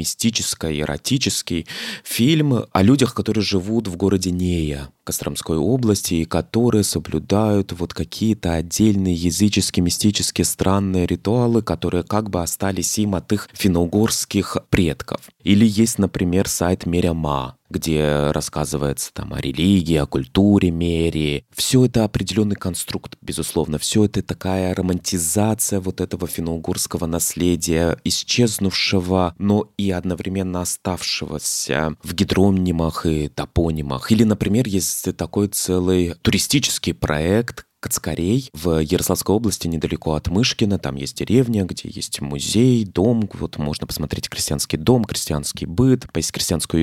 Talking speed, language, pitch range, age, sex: 125 wpm, Russian, 85-105 Hz, 20-39, male